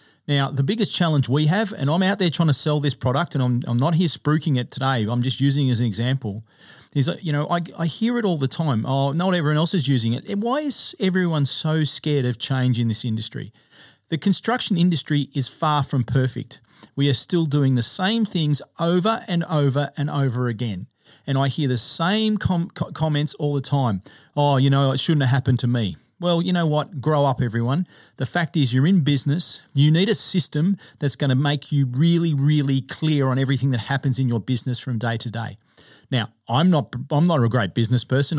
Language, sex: English, male